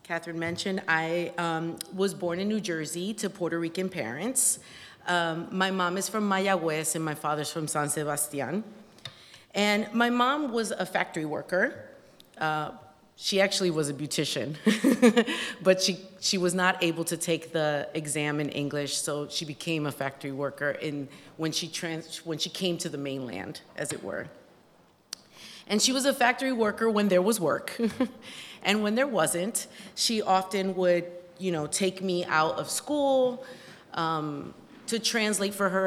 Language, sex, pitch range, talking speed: English, female, 155-210 Hz, 160 wpm